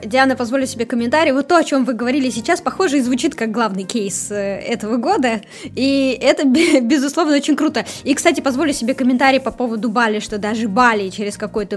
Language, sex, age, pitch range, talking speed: Russian, female, 20-39, 220-275 Hz, 190 wpm